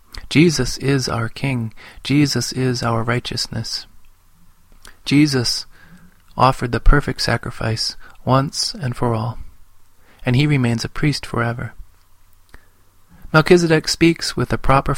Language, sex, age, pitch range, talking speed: English, male, 30-49, 115-140 Hz, 110 wpm